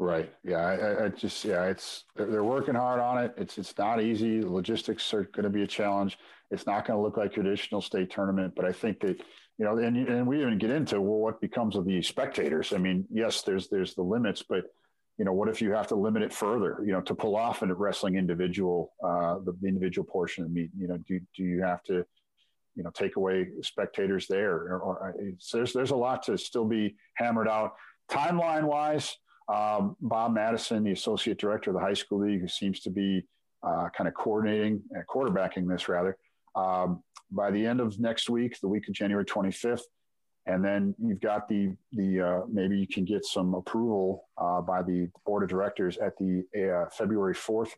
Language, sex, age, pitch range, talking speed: English, male, 50-69, 95-115 Hz, 215 wpm